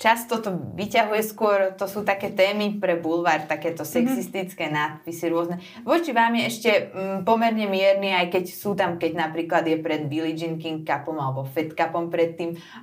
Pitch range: 165-210 Hz